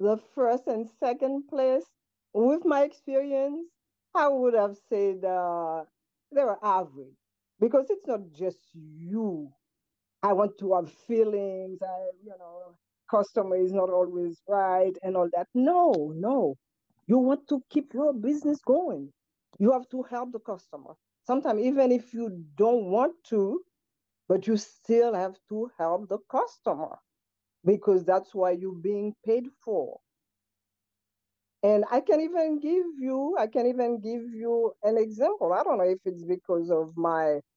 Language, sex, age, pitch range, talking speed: English, female, 50-69, 180-250 Hz, 150 wpm